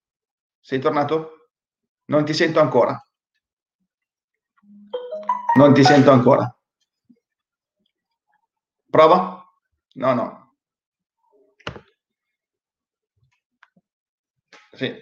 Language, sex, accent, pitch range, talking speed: Italian, male, native, 130-160 Hz, 55 wpm